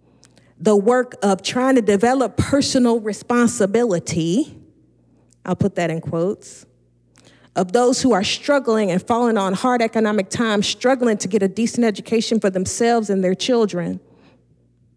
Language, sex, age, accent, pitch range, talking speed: English, female, 40-59, American, 160-230 Hz, 140 wpm